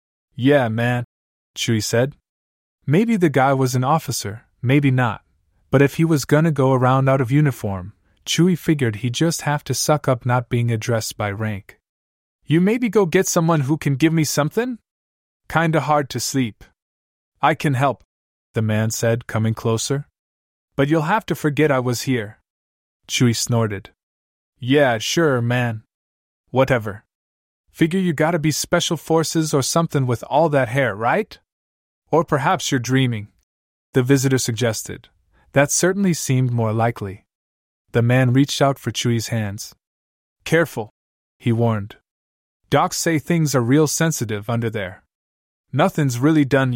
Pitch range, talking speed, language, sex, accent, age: 100-150 Hz, 150 wpm, English, male, American, 20-39